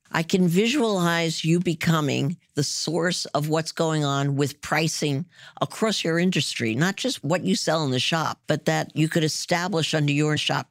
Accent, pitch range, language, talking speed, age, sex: American, 140-175 Hz, English, 180 wpm, 50-69, female